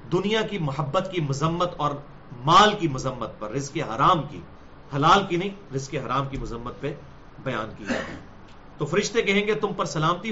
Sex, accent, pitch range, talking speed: male, Indian, 160-215 Hz, 180 wpm